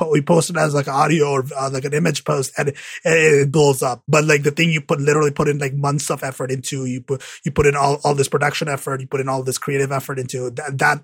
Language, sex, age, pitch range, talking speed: English, male, 20-39, 140-180 Hz, 270 wpm